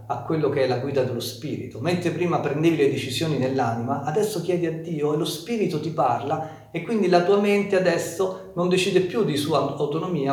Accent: native